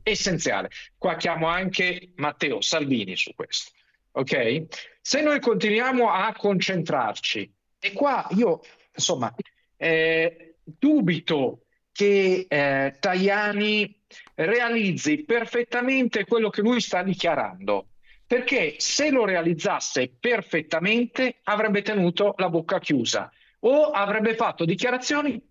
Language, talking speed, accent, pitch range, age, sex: Italian, 105 wpm, native, 170-240 Hz, 50-69, male